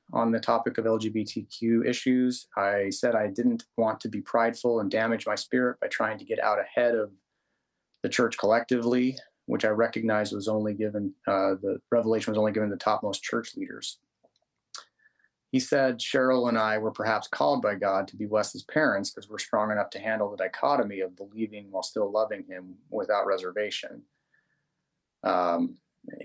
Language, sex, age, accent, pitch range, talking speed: English, male, 30-49, American, 100-125 Hz, 175 wpm